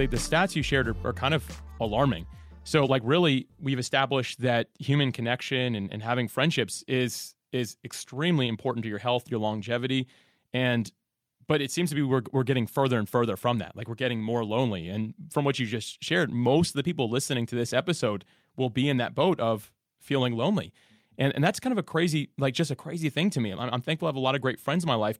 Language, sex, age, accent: English, male, 30-49, American